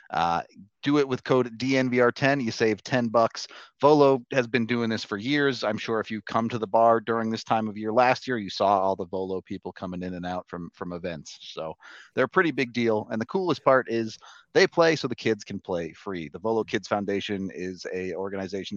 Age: 30-49